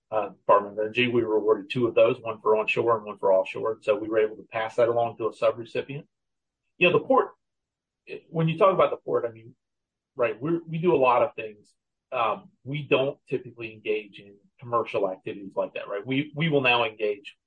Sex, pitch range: male, 110-145 Hz